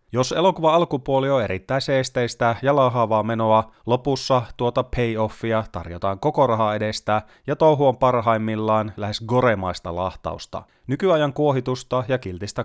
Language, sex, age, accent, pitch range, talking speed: Finnish, male, 30-49, native, 105-130 Hz, 125 wpm